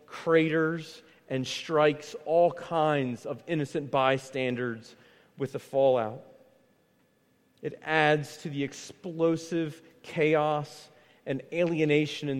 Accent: American